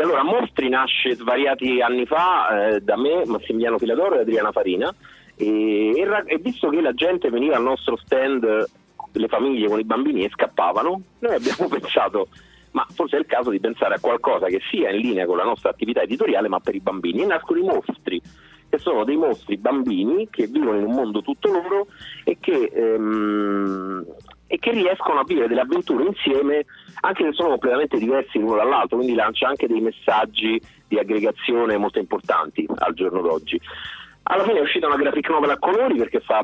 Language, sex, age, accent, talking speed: Italian, male, 40-59, native, 190 wpm